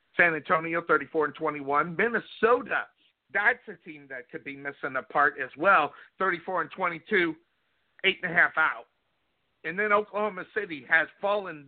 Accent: American